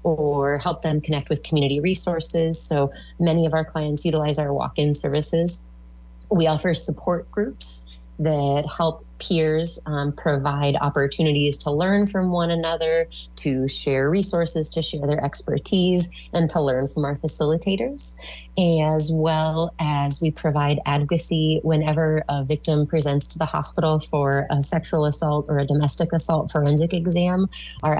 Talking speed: 145 wpm